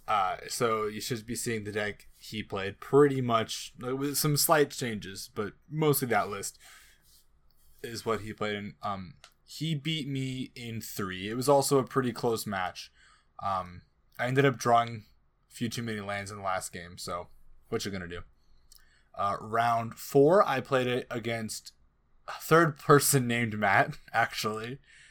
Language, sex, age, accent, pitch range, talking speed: English, male, 20-39, American, 95-125 Hz, 165 wpm